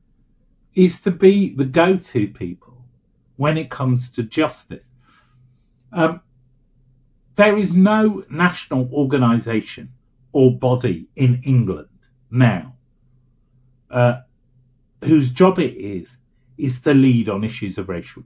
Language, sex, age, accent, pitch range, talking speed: English, male, 50-69, British, 120-135 Hz, 110 wpm